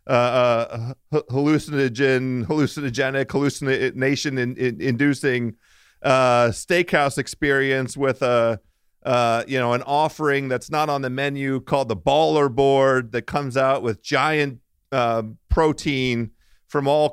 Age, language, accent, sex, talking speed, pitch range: 40-59, English, American, male, 130 wpm, 115-140 Hz